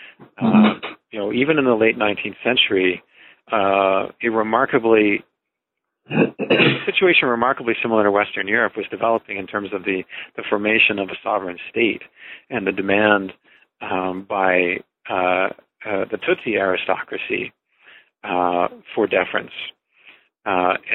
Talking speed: 130 wpm